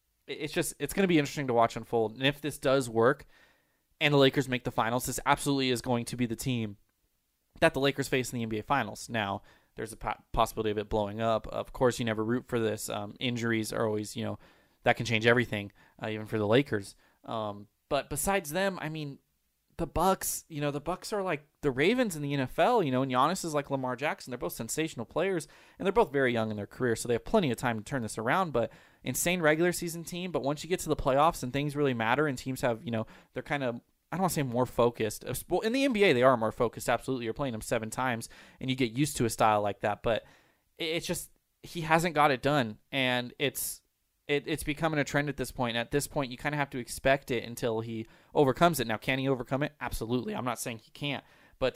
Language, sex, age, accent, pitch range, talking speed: English, male, 20-39, American, 115-145 Hz, 250 wpm